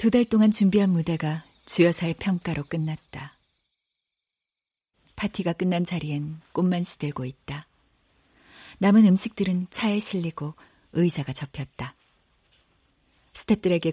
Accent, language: native, Korean